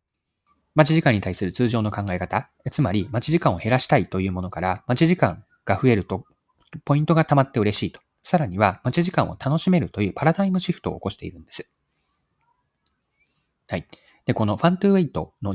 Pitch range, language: 100-150 Hz, Japanese